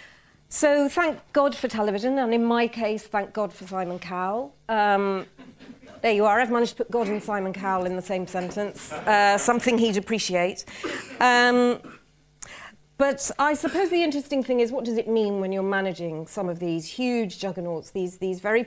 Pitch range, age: 185-230 Hz, 40-59